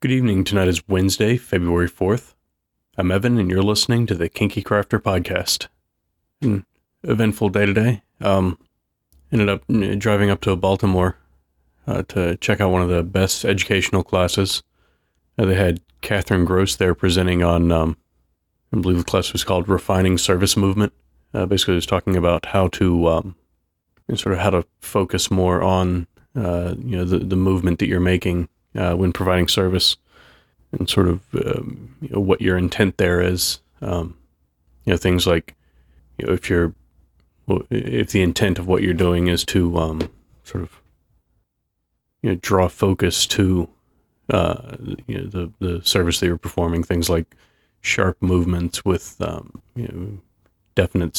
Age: 30-49